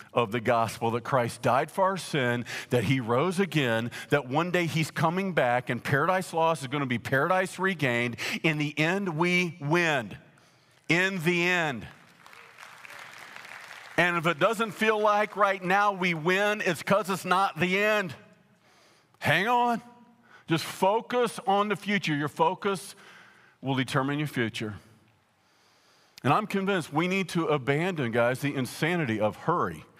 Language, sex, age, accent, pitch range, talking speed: English, male, 50-69, American, 125-175 Hz, 150 wpm